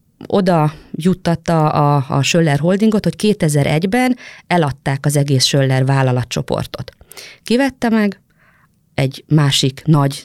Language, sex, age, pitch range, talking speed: Hungarian, female, 30-49, 135-165 Hz, 100 wpm